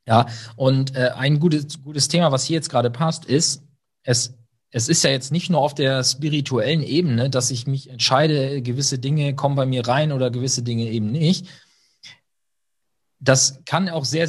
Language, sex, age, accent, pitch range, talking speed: German, male, 40-59, German, 130-160 Hz, 180 wpm